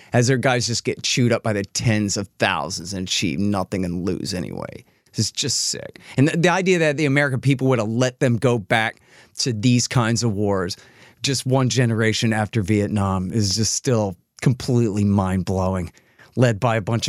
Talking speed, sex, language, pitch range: 190 wpm, male, English, 100-130 Hz